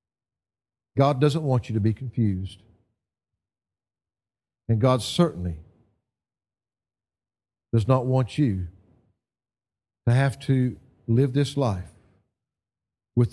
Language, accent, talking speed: English, American, 95 wpm